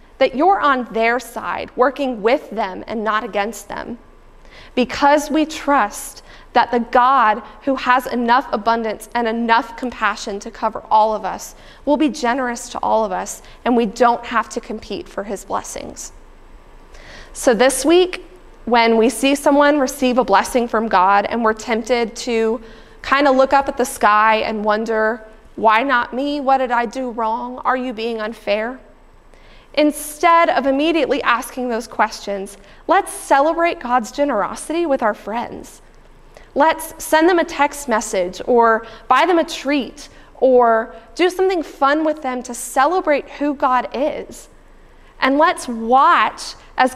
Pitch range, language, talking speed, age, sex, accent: 225-285 Hz, English, 155 wpm, 20-39, female, American